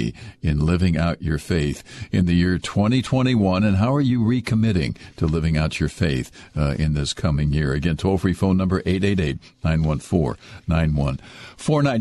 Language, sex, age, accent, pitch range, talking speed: English, male, 60-79, American, 85-115 Hz, 165 wpm